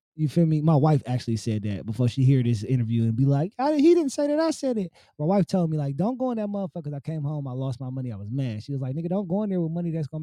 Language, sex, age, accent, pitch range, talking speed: English, male, 20-39, American, 150-200 Hz, 330 wpm